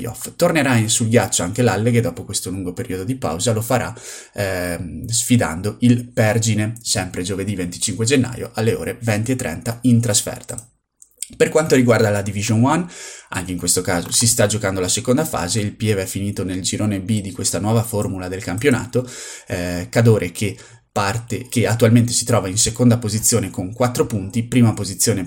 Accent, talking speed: native, 175 wpm